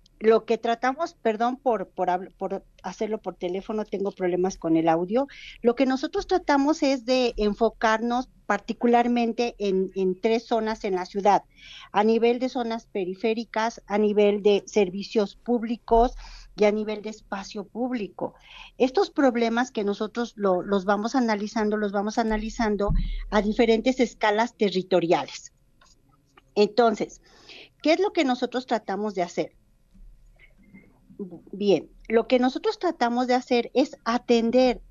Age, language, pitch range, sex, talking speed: 40-59, Spanish, 200-240 Hz, female, 130 wpm